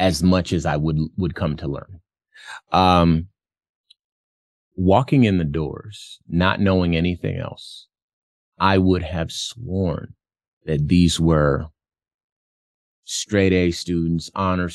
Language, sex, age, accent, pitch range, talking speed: English, male, 30-49, American, 80-95 Hz, 120 wpm